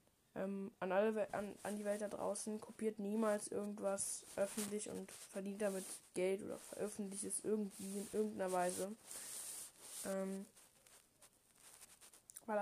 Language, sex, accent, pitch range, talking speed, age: German, female, German, 195-210 Hz, 130 wpm, 10-29